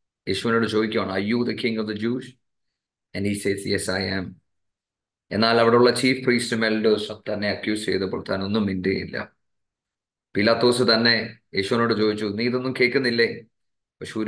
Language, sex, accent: English, male, Indian